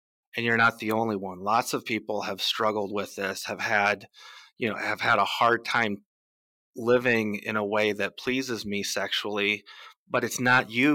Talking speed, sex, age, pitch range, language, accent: 185 wpm, male, 30-49, 105-125 Hz, English, American